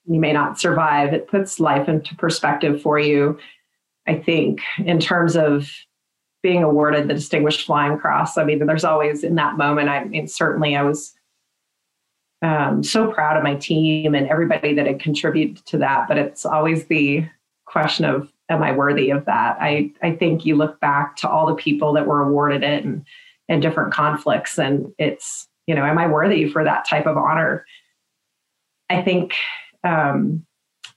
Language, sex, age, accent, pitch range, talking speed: English, female, 30-49, American, 150-170 Hz, 175 wpm